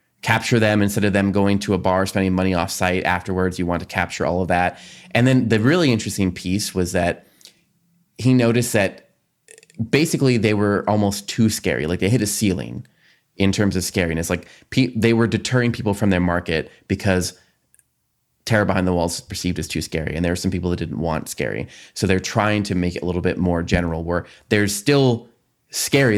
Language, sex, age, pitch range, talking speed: English, male, 20-39, 90-105 Hz, 205 wpm